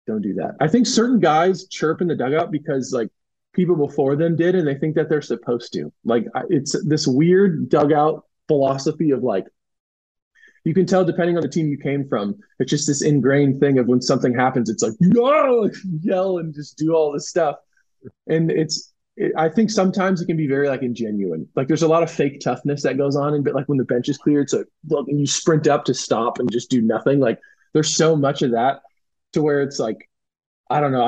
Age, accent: 20-39, American